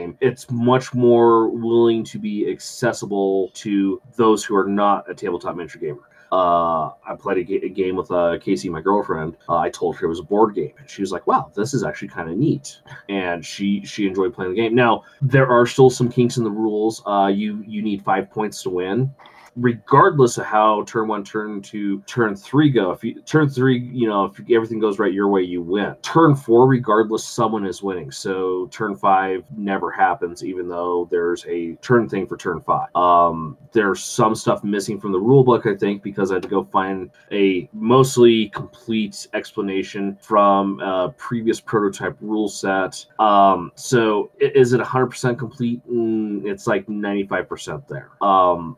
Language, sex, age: English, male, 30-49